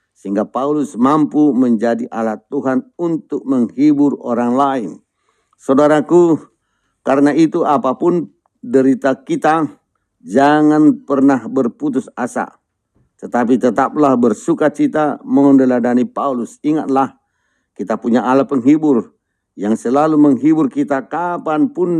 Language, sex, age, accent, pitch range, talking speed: Indonesian, male, 50-69, native, 120-145 Hz, 95 wpm